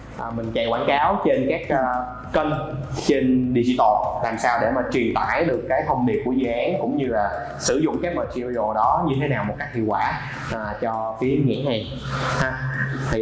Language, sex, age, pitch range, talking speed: Vietnamese, male, 20-39, 120-155 Hz, 210 wpm